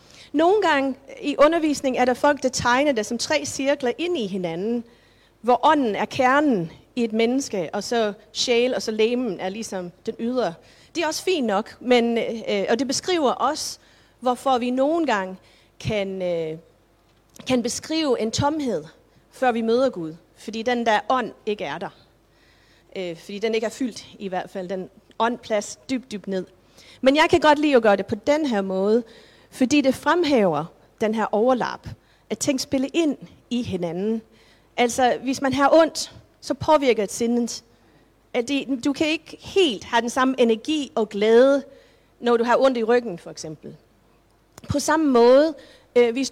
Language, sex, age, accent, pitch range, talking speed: Danish, female, 40-59, native, 215-275 Hz, 170 wpm